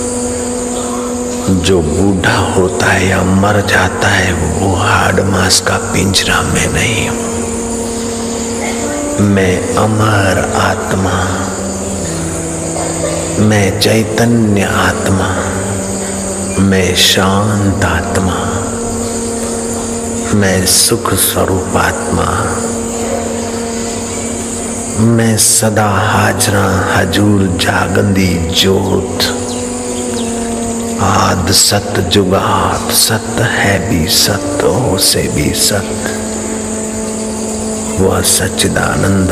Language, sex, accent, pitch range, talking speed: Hindi, male, native, 95-115 Hz, 70 wpm